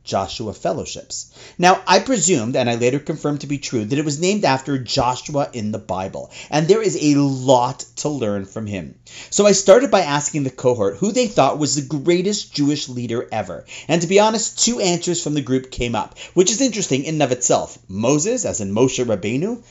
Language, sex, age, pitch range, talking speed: English, male, 30-49, 125-190 Hz, 210 wpm